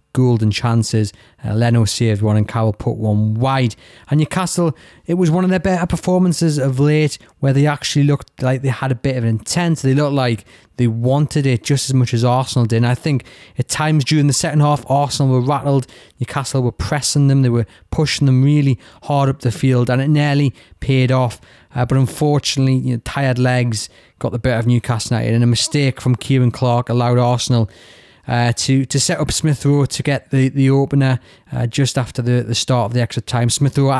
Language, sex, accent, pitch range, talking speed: English, male, British, 115-135 Hz, 215 wpm